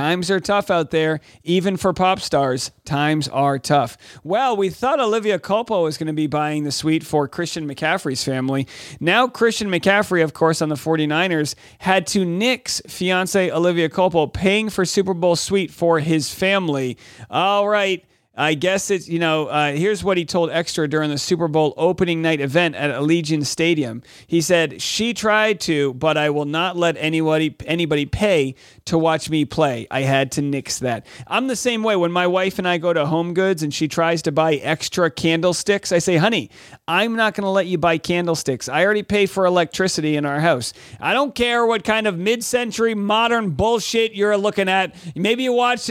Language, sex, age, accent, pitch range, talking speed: English, male, 40-59, American, 155-200 Hz, 195 wpm